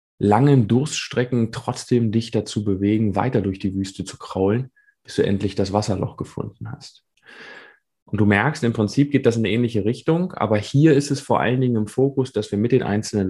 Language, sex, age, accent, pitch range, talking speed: German, male, 20-39, German, 100-125 Hz, 200 wpm